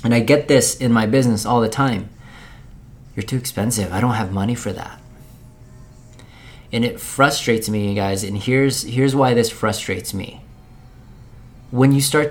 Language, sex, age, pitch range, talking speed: English, male, 20-39, 115-130 Hz, 170 wpm